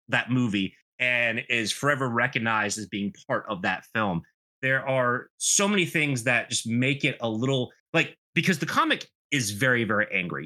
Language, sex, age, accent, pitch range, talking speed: English, male, 30-49, American, 110-135 Hz, 180 wpm